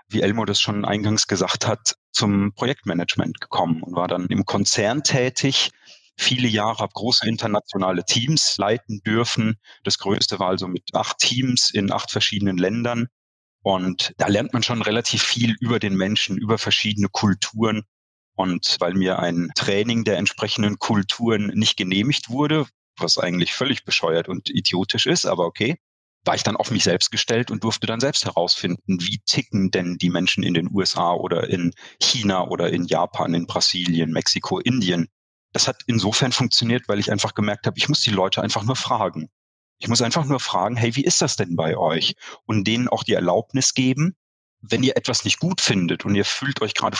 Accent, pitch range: German, 95-120 Hz